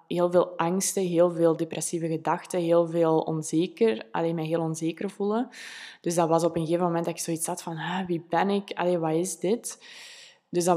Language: Dutch